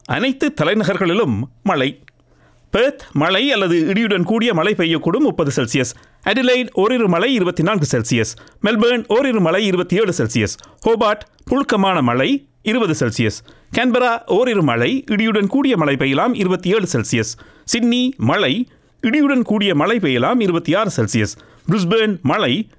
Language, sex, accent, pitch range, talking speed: Tamil, male, native, 160-230 Hz, 120 wpm